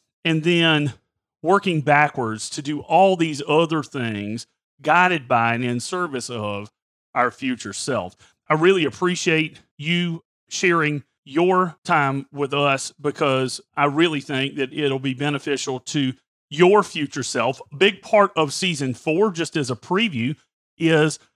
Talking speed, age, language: 140 wpm, 40-59, English